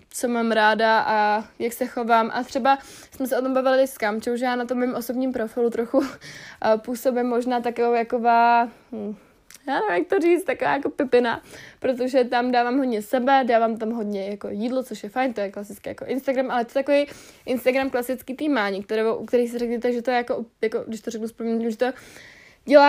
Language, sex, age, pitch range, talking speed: Czech, female, 20-39, 215-255 Hz, 195 wpm